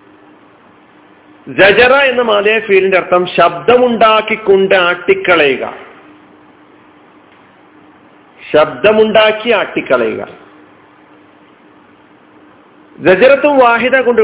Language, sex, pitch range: Malayalam, male, 180-250 Hz